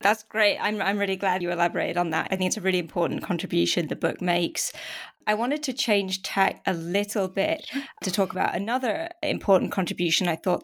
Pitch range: 180-210 Hz